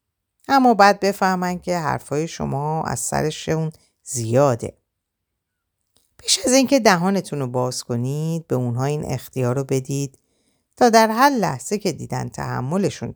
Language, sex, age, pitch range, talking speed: Persian, female, 50-69, 125-185 Hz, 130 wpm